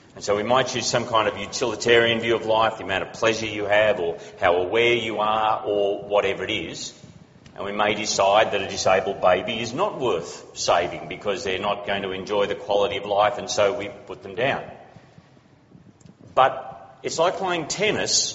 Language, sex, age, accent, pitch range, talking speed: English, male, 40-59, Australian, 105-125 Hz, 195 wpm